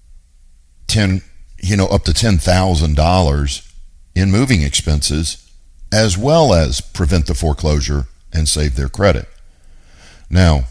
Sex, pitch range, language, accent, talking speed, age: male, 70-95 Hz, English, American, 125 wpm, 50-69